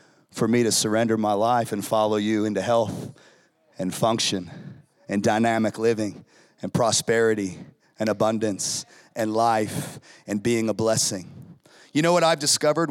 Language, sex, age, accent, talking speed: English, male, 30-49, American, 145 wpm